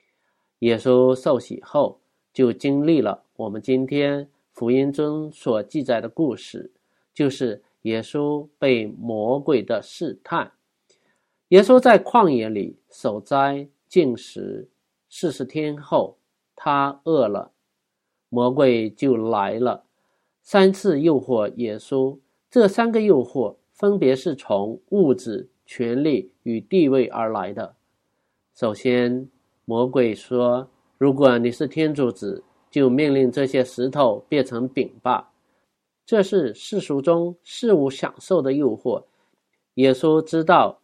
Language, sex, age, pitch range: Chinese, male, 50-69, 120-155 Hz